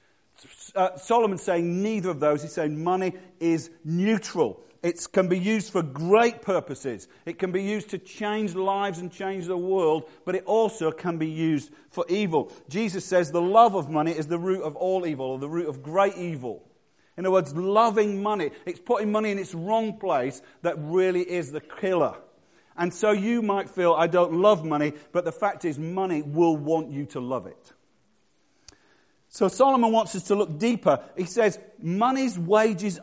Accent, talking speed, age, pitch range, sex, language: British, 185 wpm, 40-59, 165-210 Hz, male, English